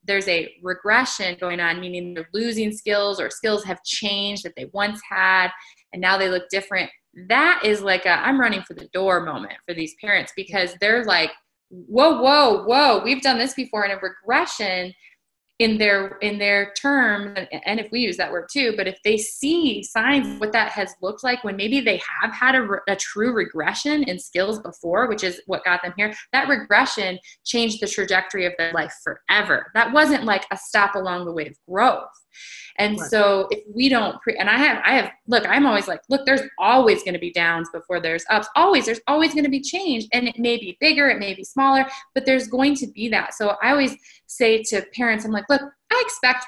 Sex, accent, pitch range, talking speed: female, American, 190-250 Hz, 215 wpm